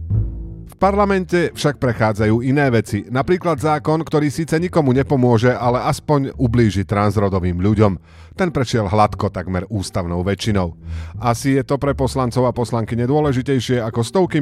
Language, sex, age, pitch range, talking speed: Slovak, male, 40-59, 95-140 Hz, 135 wpm